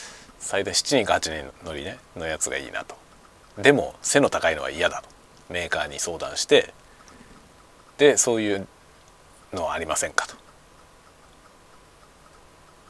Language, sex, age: Japanese, male, 40-59